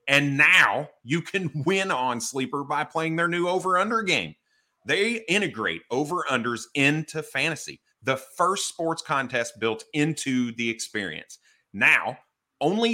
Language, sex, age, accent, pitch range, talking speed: English, male, 30-49, American, 125-170 Hz, 130 wpm